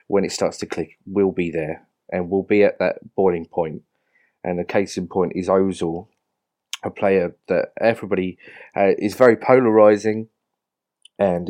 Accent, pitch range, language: British, 90-115 Hz, English